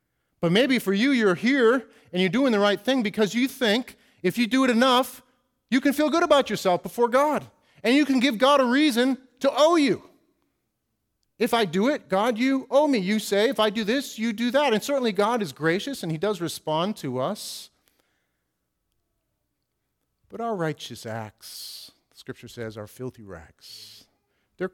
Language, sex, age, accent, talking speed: English, male, 40-59, American, 185 wpm